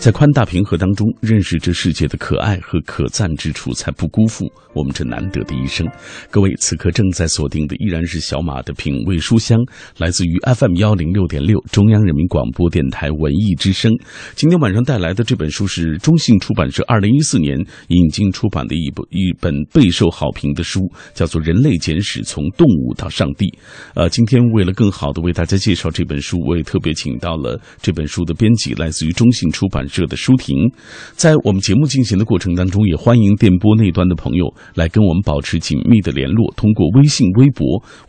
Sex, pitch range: male, 85-110 Hz